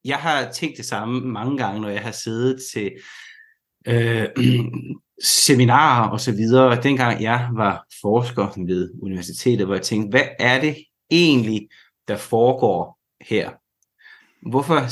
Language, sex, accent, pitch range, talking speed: Danish, male, native, 110-130 Hz, 135 wpm